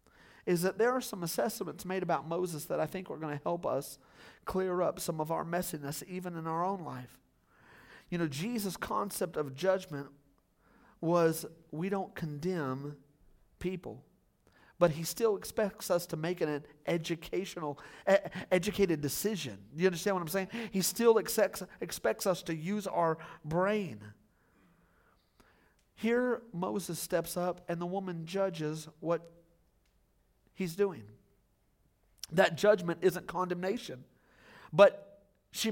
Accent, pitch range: American, 165-210 Hz